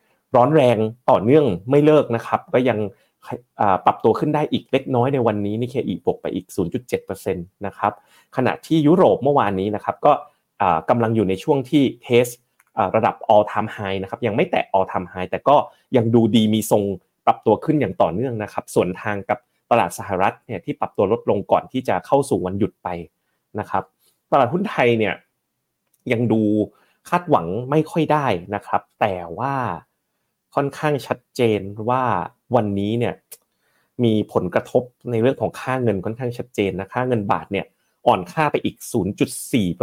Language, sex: Thai, male